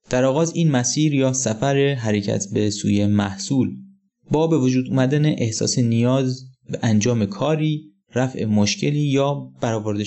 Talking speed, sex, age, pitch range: 135 wpm, male, 20-39, 110-150 Hz